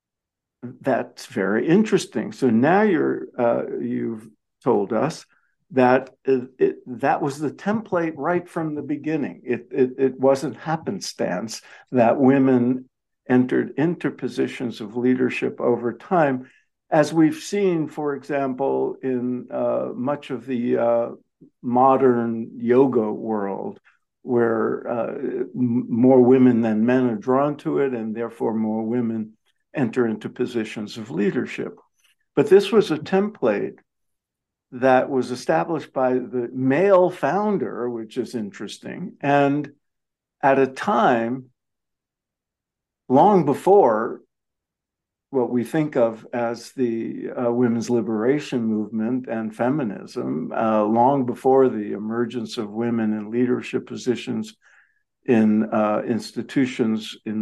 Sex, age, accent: male, 60-79, American